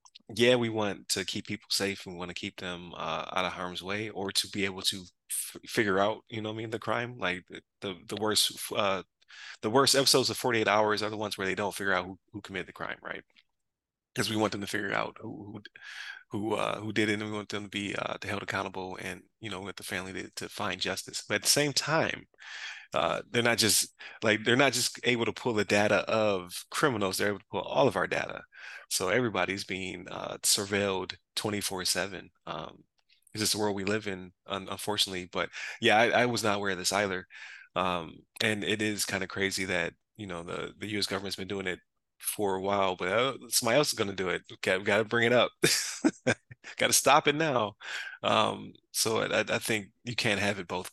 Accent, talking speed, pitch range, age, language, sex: American, 230 wpm, 95-110 Hz, 20-39, English, male